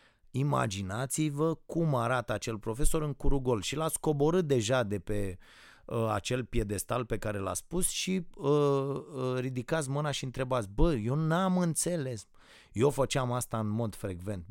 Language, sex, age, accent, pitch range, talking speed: Romanian, male, 30-49, native, 115-165 Hz, 160 wpm